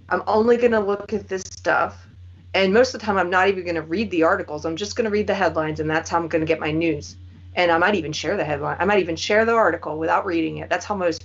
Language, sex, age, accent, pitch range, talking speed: English, female, 30-49, American, 150-195 Hz, 275 wpm